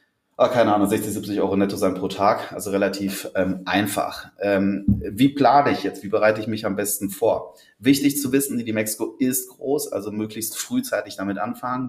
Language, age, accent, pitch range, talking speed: German, 30-49, German, 100-115 Hz, 190 wpm